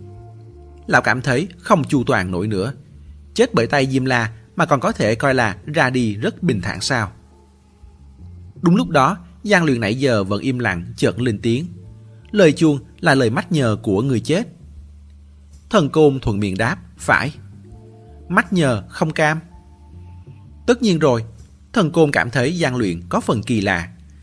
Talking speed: 175 wpm